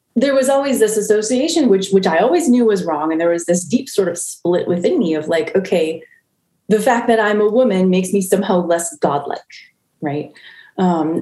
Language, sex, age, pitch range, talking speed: English, female, 30-49, 180-240 Hz, 205 wpm